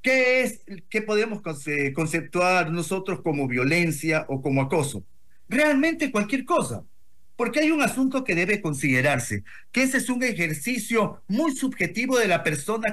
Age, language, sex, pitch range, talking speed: 50-69, Spanish, male, 165-240 Hz, 145 wpm